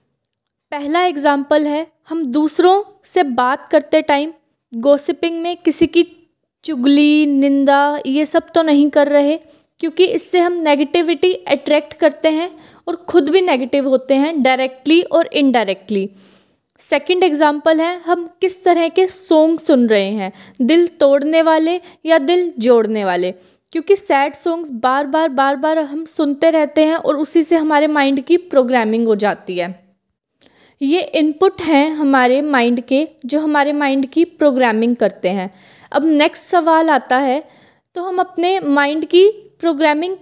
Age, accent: 20-39, native